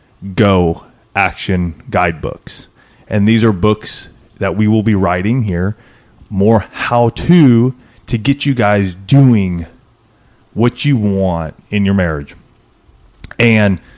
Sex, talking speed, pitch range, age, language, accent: male, 120 wpm, 95-115 Hz, 30-49, English, American